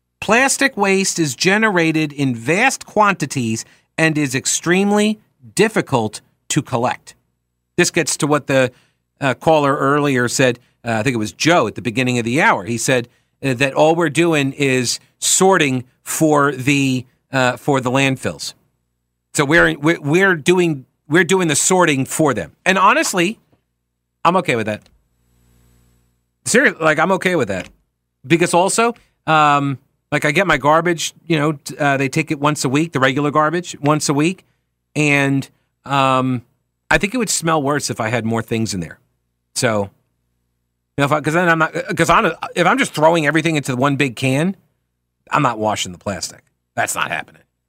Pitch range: 115-160 Hz